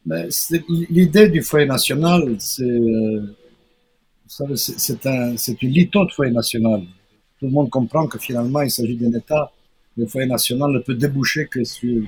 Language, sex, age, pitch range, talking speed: French, male, 60-79, 115-150 Hz, 170 wpm